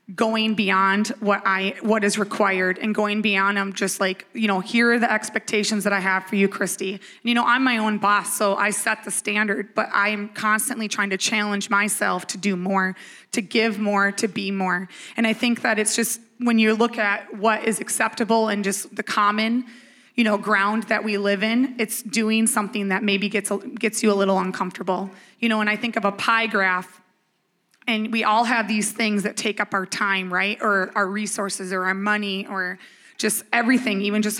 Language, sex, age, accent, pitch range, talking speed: English, female, 20-39, American, 200-225 Hz, 210 wpm